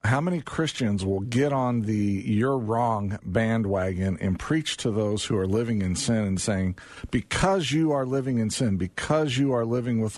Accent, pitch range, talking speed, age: American, 110-145 Hz, 190 wpm, 50-69